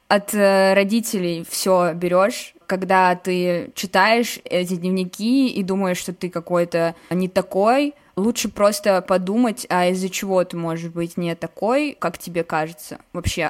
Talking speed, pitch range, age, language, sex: 140 wpm, 185-235 Hz, 20-39, Russian, female